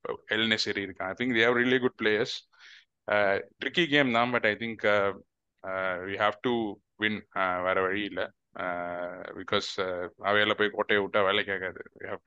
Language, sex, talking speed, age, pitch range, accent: Tamil, male, 160 wpm, 20-39, 100-110 Hz, native